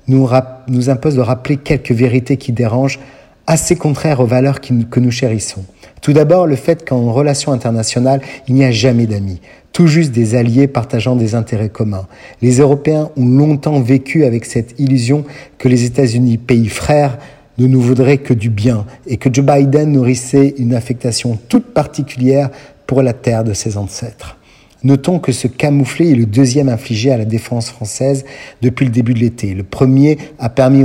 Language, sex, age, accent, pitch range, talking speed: Italian, male, 50-69, French, 120-140 Hz, 180 wpm